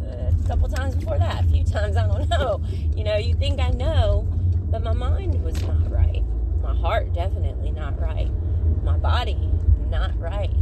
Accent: American